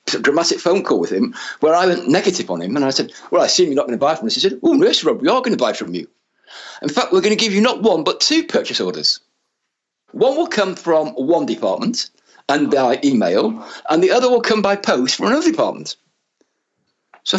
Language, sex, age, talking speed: English, male, 50-69, 235 wpm